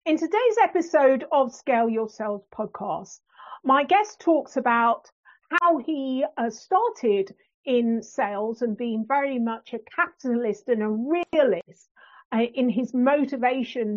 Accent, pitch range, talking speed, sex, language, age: British, 225-305 Hz, 130 wpm, female, English, 50-69